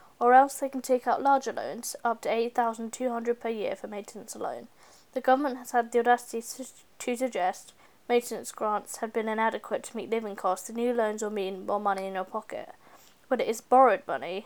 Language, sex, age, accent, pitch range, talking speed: English, female, 10-29, British, 210-245 Hz, 200 wpm